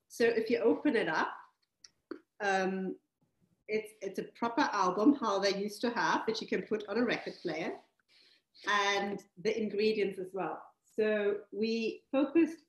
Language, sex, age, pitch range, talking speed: English, female, 40-59, 195-240 Hz, 155 wpm